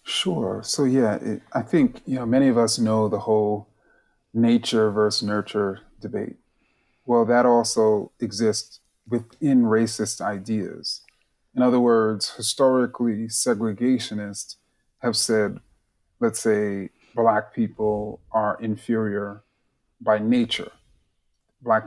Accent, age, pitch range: American, 30-49, 110-130 Hz